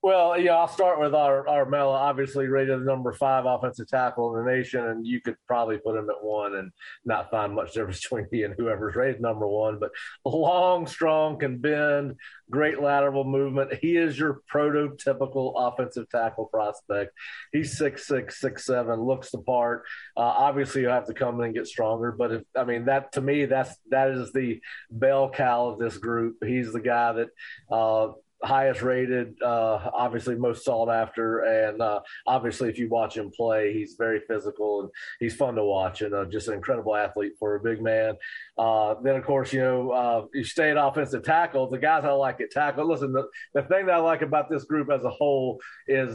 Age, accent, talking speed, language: 30-49, American, 205 wpm, English